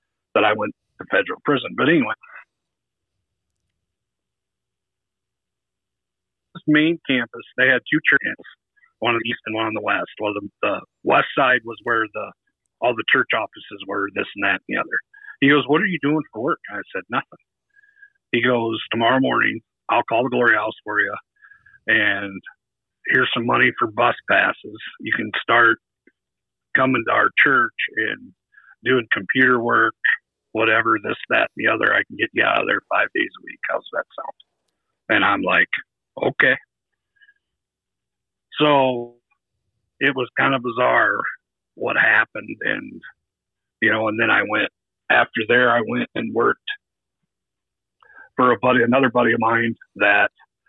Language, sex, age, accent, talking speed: English, male, 50-69, American, 160 wpm